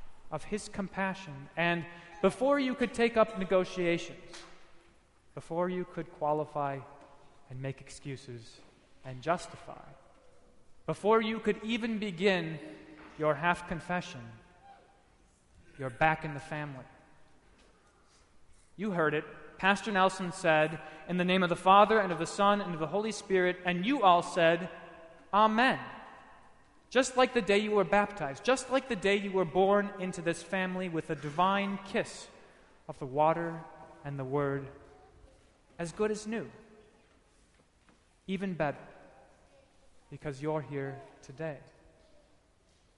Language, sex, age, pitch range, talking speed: English, male, 30-49, 145-190 Hz, 130 wpm